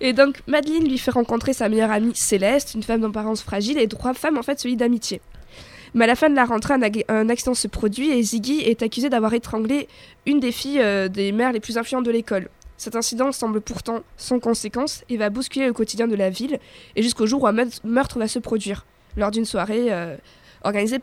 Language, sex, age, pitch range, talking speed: French, female, 20-39, 215-255 Hz, 220 wpm